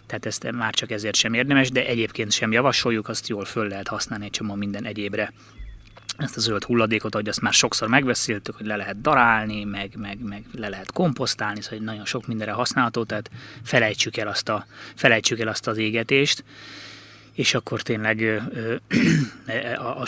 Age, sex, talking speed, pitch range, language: 20-39, male, 175 wpm, 110-125 Hz, Hungarian